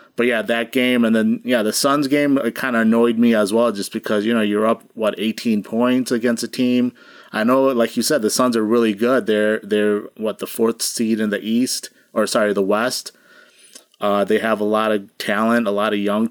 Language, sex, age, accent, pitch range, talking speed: English, male, 30-49, American, 100-115 Hz, 230 wpm